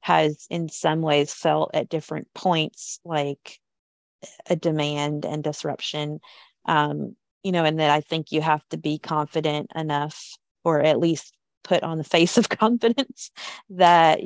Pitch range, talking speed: 150-175 Hz, 150 wpm